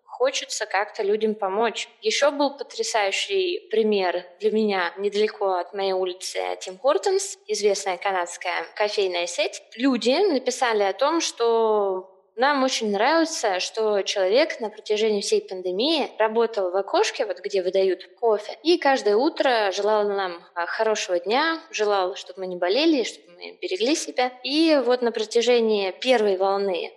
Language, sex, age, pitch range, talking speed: Russian, female, 20-39, 195-280 Hz, 140 wpm